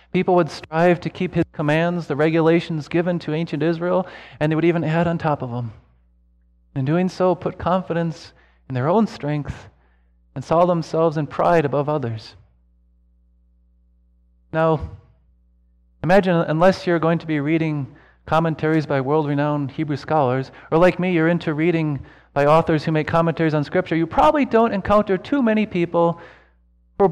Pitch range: 120-175 Hz